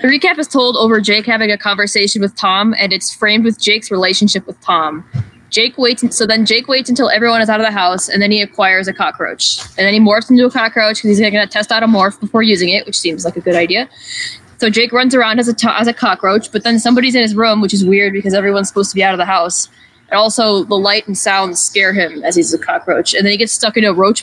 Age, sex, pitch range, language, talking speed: 10-29, female, 190-220 Hz, English, 275 wpm